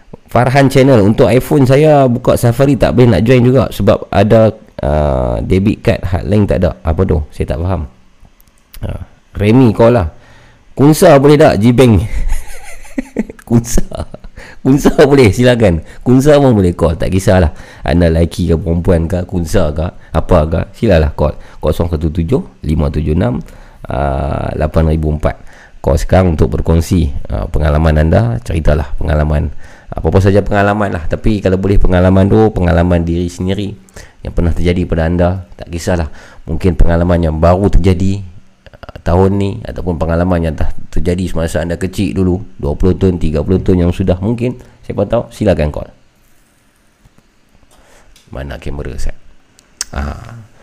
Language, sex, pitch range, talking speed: Malay, male, 85-110 Hz, 140 wpm